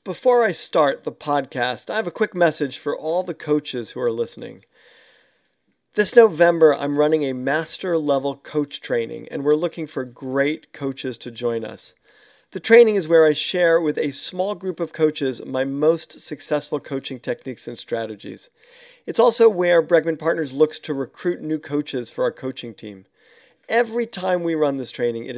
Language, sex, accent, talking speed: English, male, American, 175 wpm